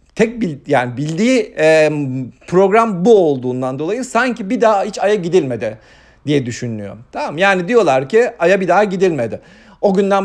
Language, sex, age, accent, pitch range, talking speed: Turkish, male, 50-69, native, 135-195 Hz, 145 wpm